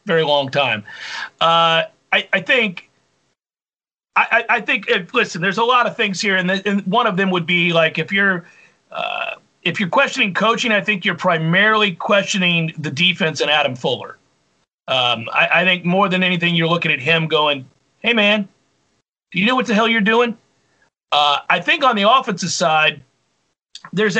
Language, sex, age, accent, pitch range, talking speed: English, male, 40-59, American, 150-195 Hz, 180 wpm